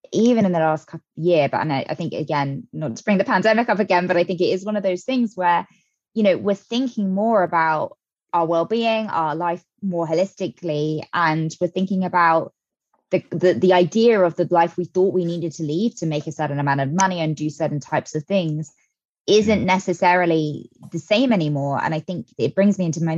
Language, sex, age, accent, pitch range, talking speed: English, female, 20-39, British, 155-185 Hz, 215 wpm